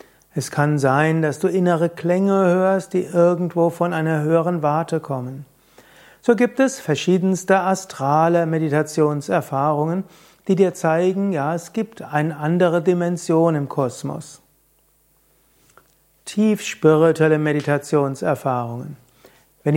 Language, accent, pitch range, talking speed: German, German, 150-185 Hz, 105 wpm